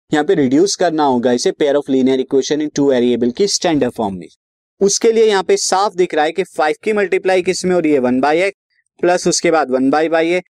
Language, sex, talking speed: Hindi, male, 210 wpm